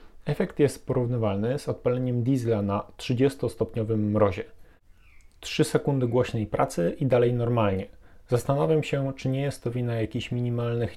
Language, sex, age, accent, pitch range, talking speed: Polish, male, 30-49, native, 105-125 Hz, 135 wpm